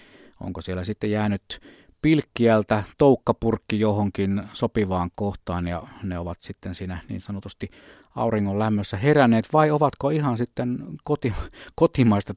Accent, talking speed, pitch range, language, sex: native, 120 wpm, 95-125 Hz, Finnish, male